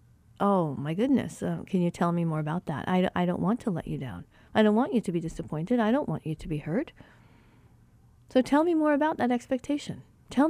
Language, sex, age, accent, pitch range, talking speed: English, female, 40-59, American, 180-225 Hz, 240 wpm